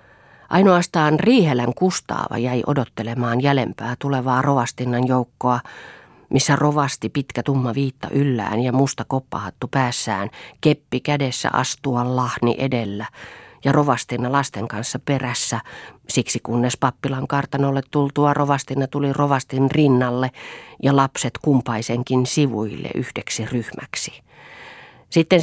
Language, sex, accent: Finnish, female, native